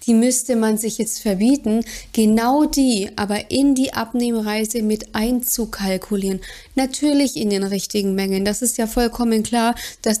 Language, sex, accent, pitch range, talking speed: German, female, German, 210-245 Hz, 145 wpm